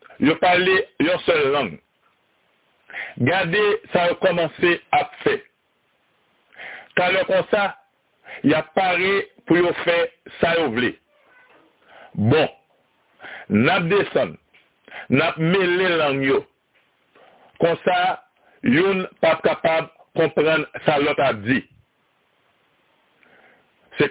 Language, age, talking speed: French, 60-79, 95 wpm